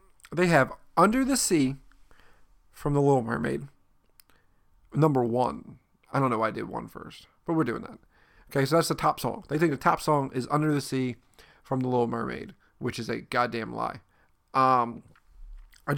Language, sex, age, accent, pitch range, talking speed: English, male, 40-59, American, 125-160 Hz, 185 wpm